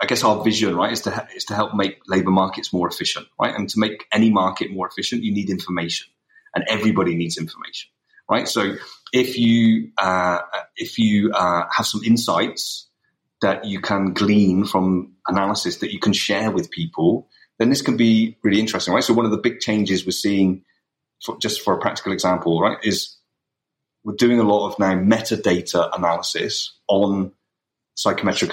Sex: male